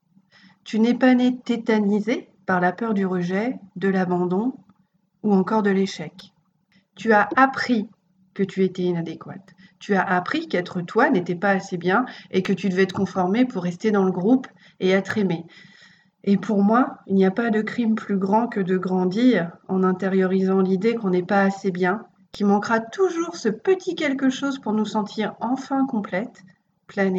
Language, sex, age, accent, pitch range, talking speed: French, female, 40-59, French, 185-220 Hz, 180 wpm